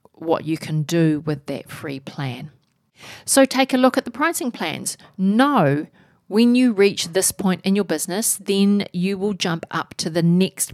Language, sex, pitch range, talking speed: English, female, 160-210 Hz, 185 wpm